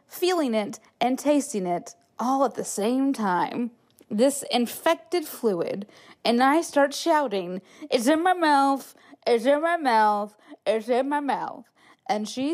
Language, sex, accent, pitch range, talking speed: English, female, American, 210-285 Hz, 150 wpm